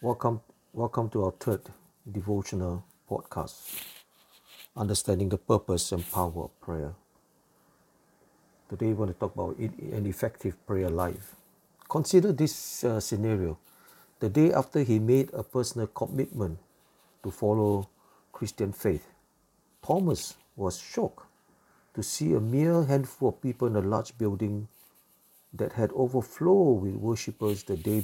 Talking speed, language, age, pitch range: 130 wpm, English, 50-69, 100-145 Hz